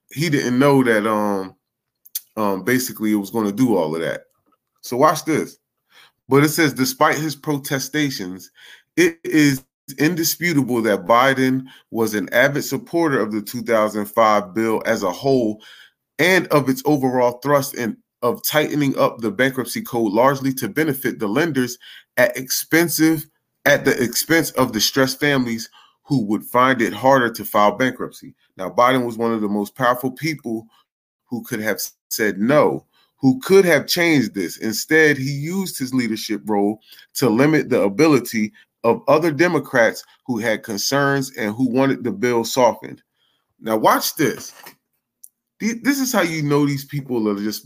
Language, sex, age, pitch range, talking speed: English, male, 20-39, 110-145 Hz, 160 wpm